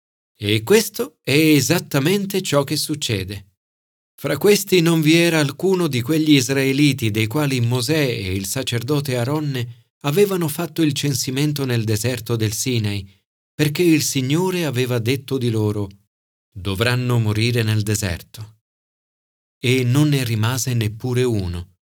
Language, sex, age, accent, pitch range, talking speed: Italian, male, 40-59, native, 110-160 Hz, 130 wpm